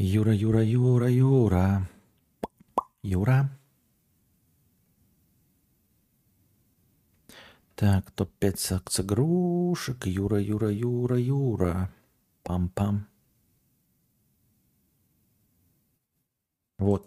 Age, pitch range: 40-59, 105-135 Hz